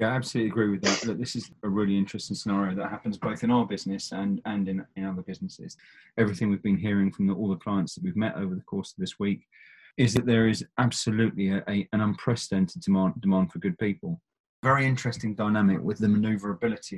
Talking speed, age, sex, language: 220 wpm, 20-39, male, English